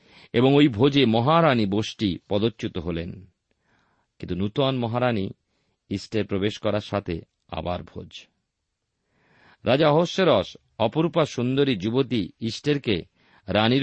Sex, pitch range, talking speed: male, 95-125 Hz, 95 wpm